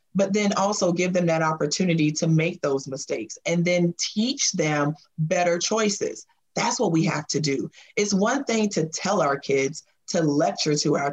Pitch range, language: 155-200 Hz, English